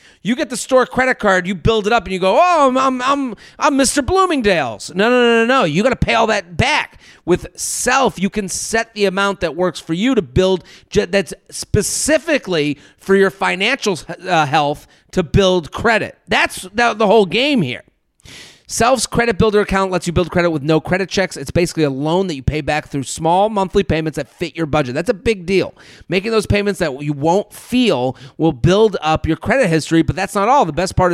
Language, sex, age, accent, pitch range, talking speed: English, male, 40-59, American, 165-230 Hz, 215 wpm